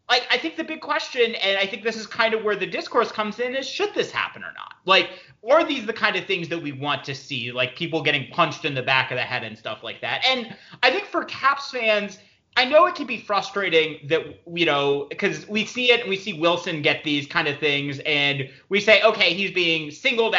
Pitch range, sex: 145-235 Hz, male